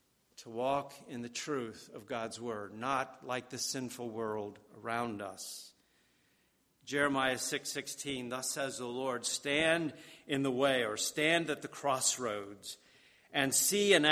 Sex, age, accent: male, 50-69, American